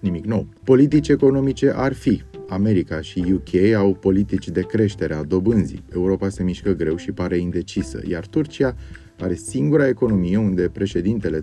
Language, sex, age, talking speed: Romanian, male, 30-49, 150 wpm